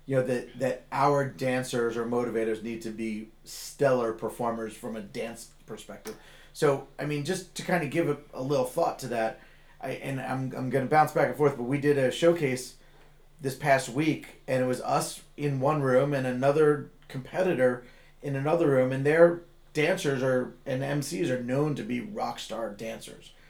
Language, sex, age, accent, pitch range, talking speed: English, male, 30-49, American, 130-150 Hz, 190 wpm